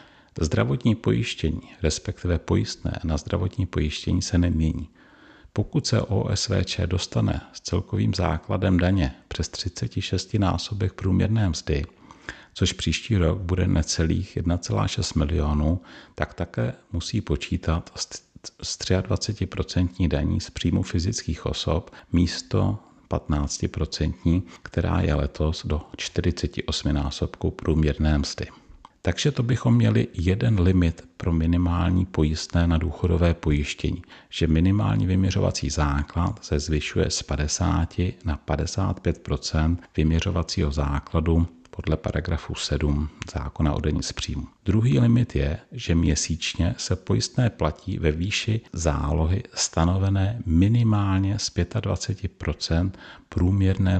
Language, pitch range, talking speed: Czech, 80-95 Hz, 110 wpm